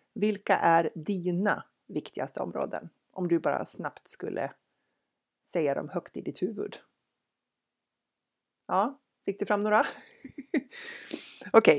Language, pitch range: Swedish, 160-225 Hz